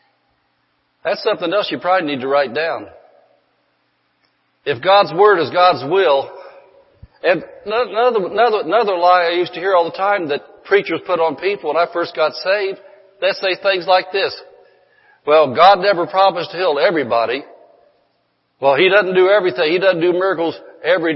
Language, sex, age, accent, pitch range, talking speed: English, male, 60-79, American, 160-220 Hz, 165 wpm